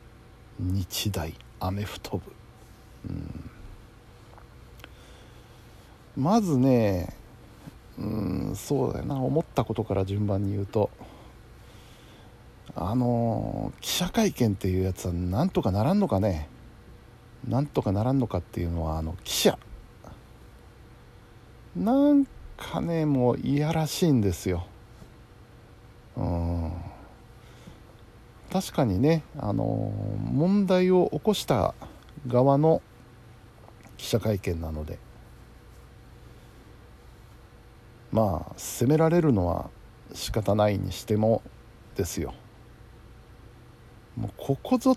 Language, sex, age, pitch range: Japanese, male, 60-79, 95-125 Hz